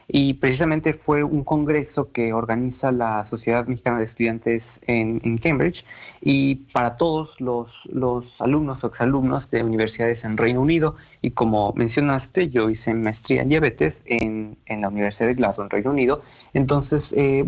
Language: Spanish